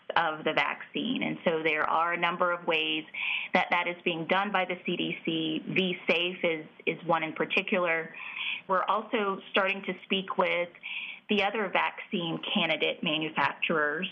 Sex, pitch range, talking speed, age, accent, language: female, 160-195 Hz, 150 wpm, 30-49, American, English